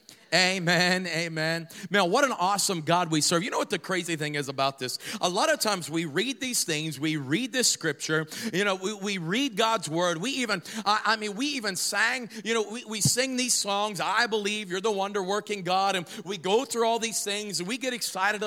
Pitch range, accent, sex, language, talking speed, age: 170-230 Hz, American, male, English, 225 wpm, 40-59